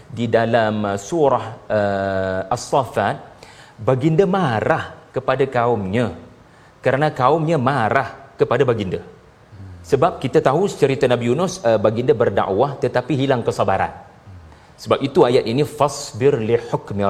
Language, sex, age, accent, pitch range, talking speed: Malayalam, male, 40-59, Indonesian, 125-195 Hz, 120 wpm